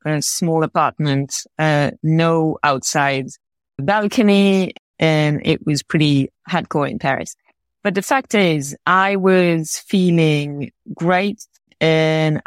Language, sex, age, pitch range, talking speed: English, female, 30-49, 150-180 Hz, 110 wpm